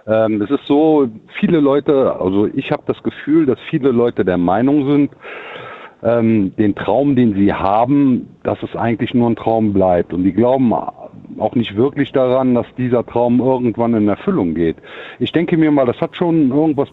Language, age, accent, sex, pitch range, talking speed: German, 50-69, German, male, 110-150 Hz, 185 wpm